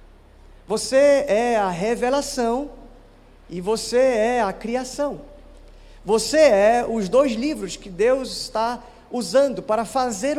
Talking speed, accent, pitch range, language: 115 wpm, Brazilian, 215-280 Hz, Portuguese